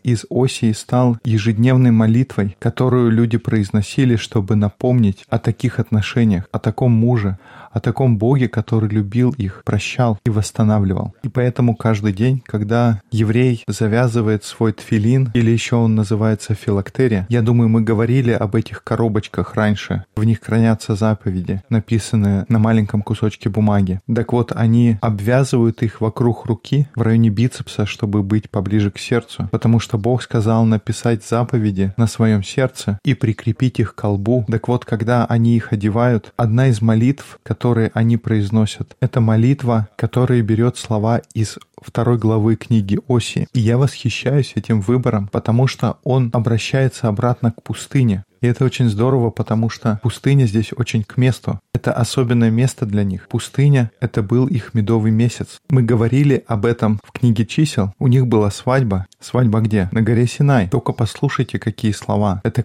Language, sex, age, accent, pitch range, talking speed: Russian, male, 20-39, native, 110-125 Hz, 155 wpm